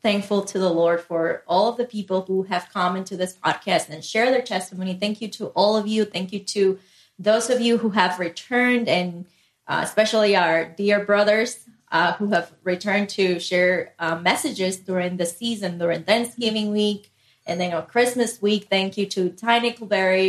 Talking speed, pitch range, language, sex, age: 190 wpm, 185-230 Hz, English, female, 20-39